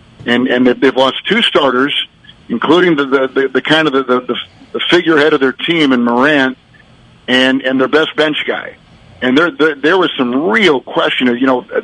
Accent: American